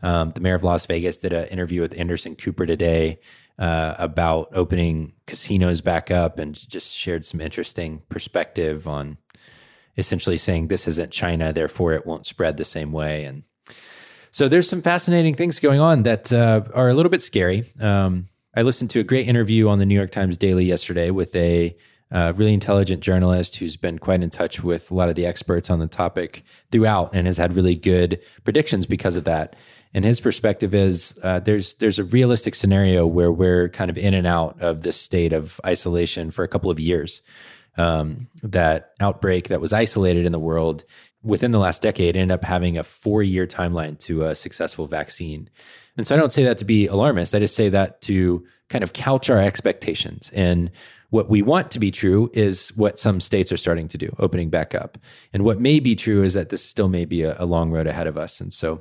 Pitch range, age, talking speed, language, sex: 85-105 Hz, 20-39, 210 wpm, English, male